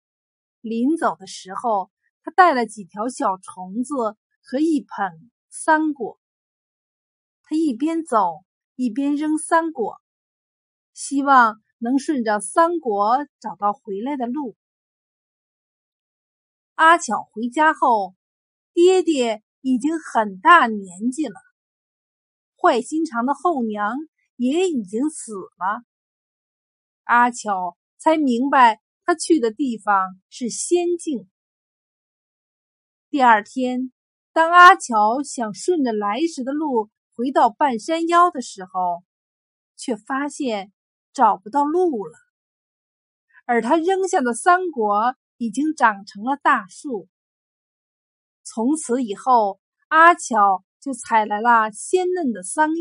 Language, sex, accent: Chinese, female, native